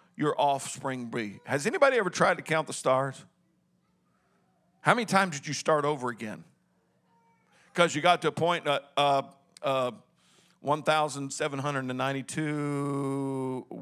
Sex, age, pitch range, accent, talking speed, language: male, 50-69, 130-170 Hz, American, 120 wpm, English